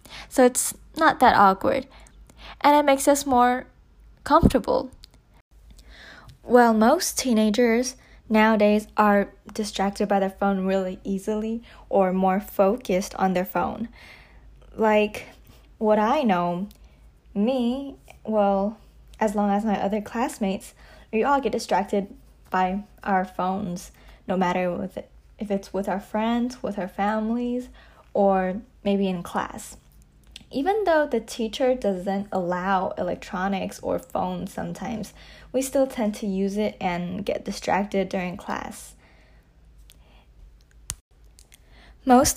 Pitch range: 190-235 Hz